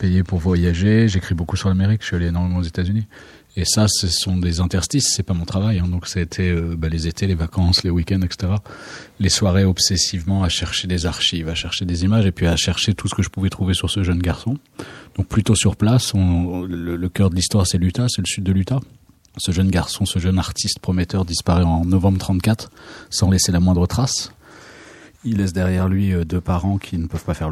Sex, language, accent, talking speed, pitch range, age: male, French, French, 235 wpm, 85-100 Hz, 30-49